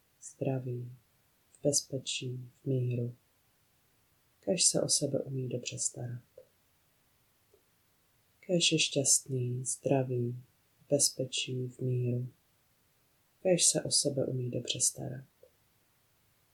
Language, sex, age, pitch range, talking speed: Czech, female, 30-49, 125-145 Hz, 95 wpm